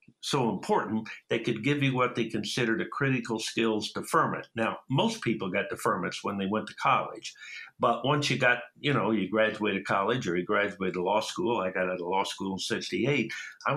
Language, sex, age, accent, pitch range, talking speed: English, male, 60-79, American, 100-125 Hz, 200 wpm